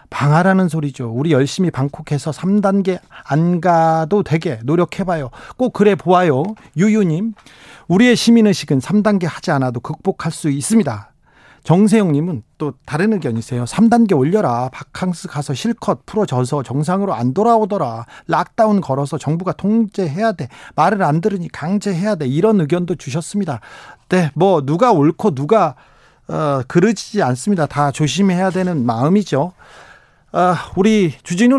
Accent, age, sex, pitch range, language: native, 40-59, male, 145-205 Hz, Korean